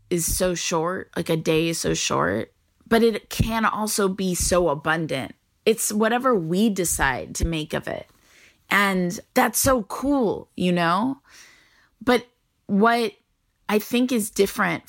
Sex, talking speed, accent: female, 145 wpm, American